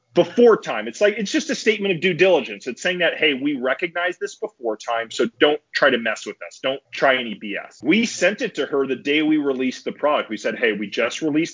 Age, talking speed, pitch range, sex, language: 30-49, 250 wpm, 120-155 Hz, male, English